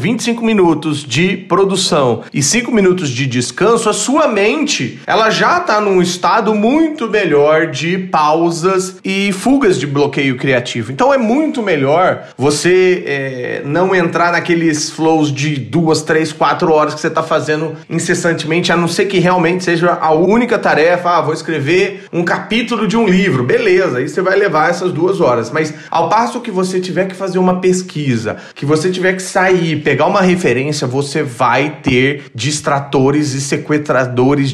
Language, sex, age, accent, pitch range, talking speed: Portuguese, male, 30-49, Brazilian, 145-185 Hz, 165 wpm